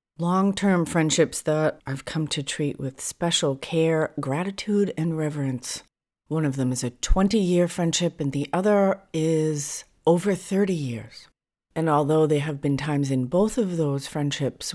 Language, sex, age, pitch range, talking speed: English, female, 40-59, 140-180 Hz, 155 wpm